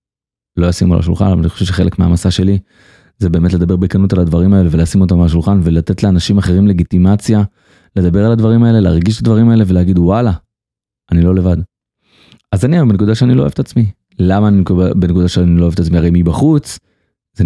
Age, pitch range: 30-49, 90-110 Hz